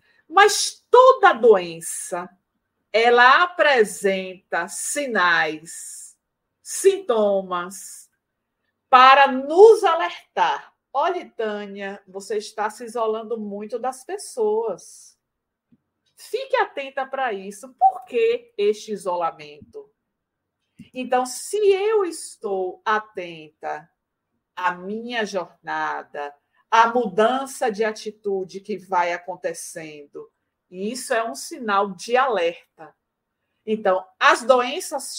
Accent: Brazilian